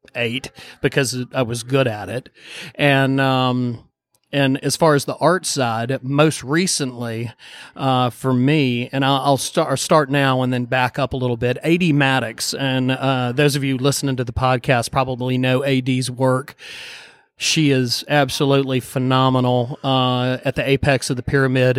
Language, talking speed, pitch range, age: English, 160 wpm, 125-140 Hz, 40-59